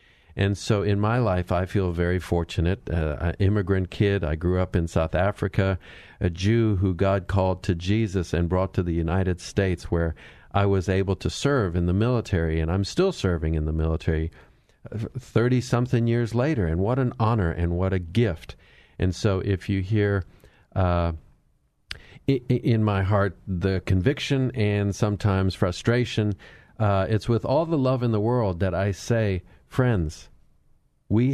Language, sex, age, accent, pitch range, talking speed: English, male, 50-69, American, 90-115 Hz, 165 wpm